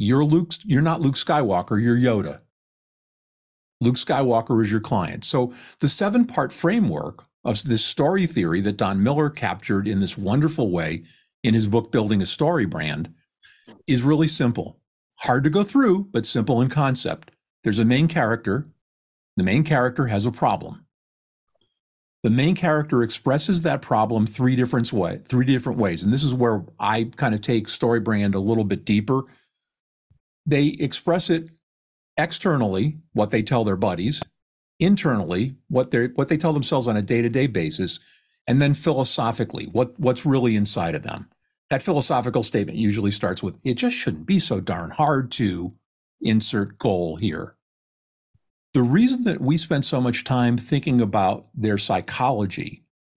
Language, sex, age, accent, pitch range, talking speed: English, male, 50-69, American, 110-145 Hz, 160 wpm